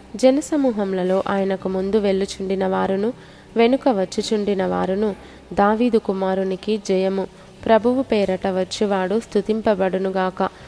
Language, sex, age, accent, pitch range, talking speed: Telugu, female, 20-39, native, 195-220 Hz, 85 wpm